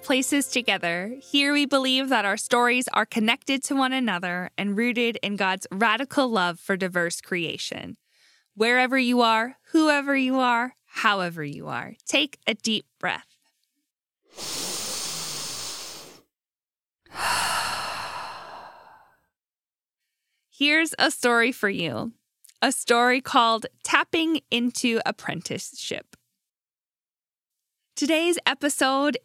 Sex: female